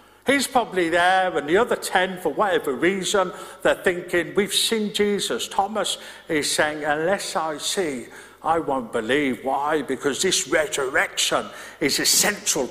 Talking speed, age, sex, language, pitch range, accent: 140 wpm, 50-69, male, English, 185-245 Hz, British